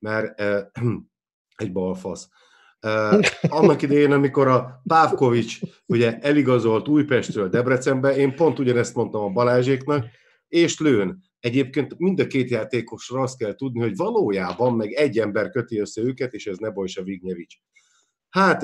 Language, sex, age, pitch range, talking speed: Hungarian, male, 50-69, 115-160 Hz, 140 wpm